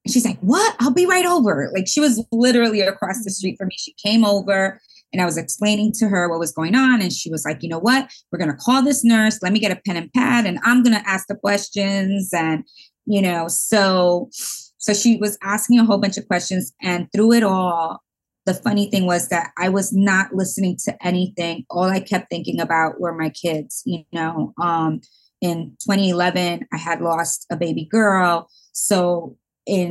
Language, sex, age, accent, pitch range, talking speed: English, female, 20-39, American, 175-215 Hz, 210 wpm